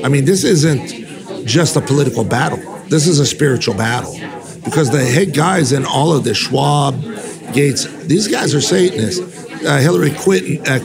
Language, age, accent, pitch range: English, 50-69, American, 140-165 Hz